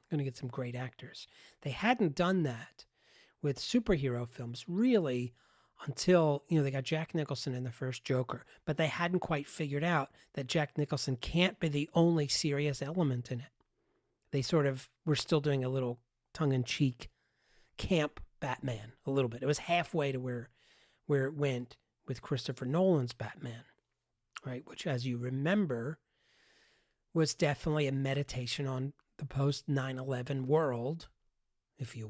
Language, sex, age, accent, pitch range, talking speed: English, male, 40-59, American, 125-155 Hz, 155 wpm